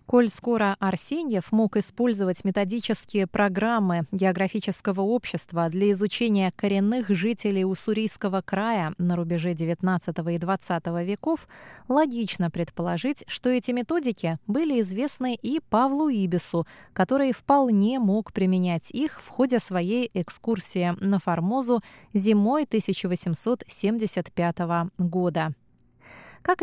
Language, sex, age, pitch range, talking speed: Russian, female, 20-39, 180-235 Hz, 105 wpm